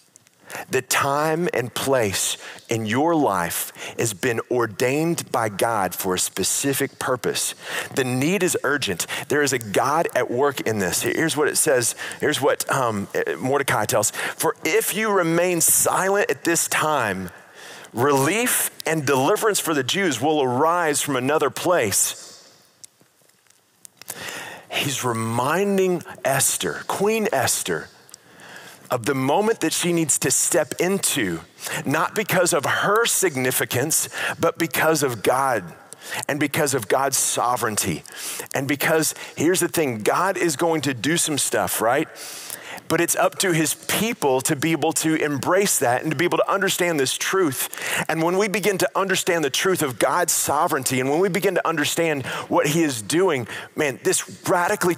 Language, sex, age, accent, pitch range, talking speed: English, male, 40-59, American, 135-175 Hz, 155 wpm